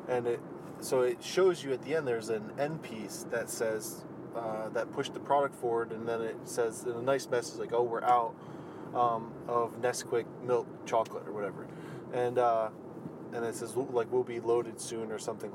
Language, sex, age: English, male, 20-39